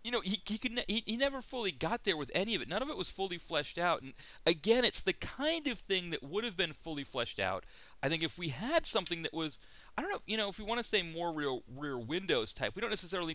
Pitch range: 115-175 Hz